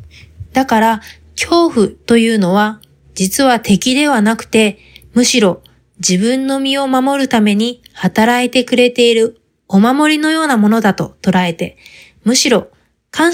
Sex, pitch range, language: female, 195-255 Hz, Japanese